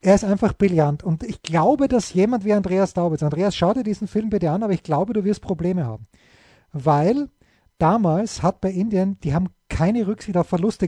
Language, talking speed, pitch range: German, 205 wpm, 170-205 Hz